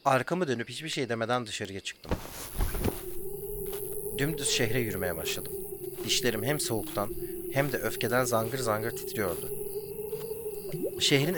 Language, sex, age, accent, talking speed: English, male, 40-59, Turkish, 110 wpm